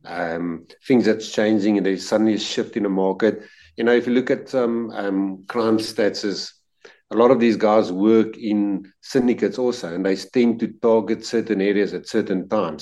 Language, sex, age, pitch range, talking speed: English, male, 50-69, 100-120 Hz, 185 wpm